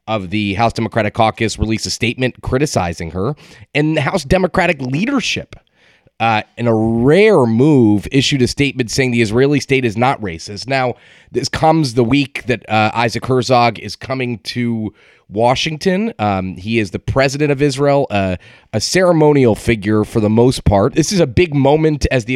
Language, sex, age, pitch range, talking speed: English, male, 30-49, 105-130 Hz, 175 wpm